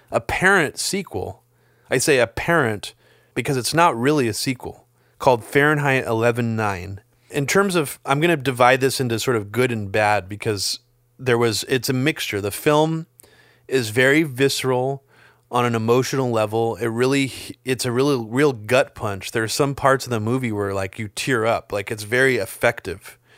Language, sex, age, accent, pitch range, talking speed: English, male, 30-49, American, 110-130 Hz, 175 wpm